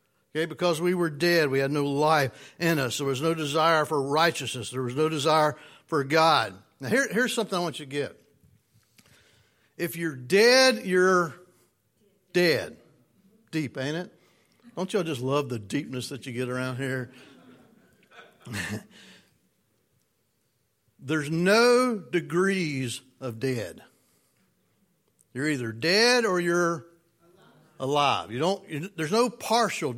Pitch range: 145-215 Hz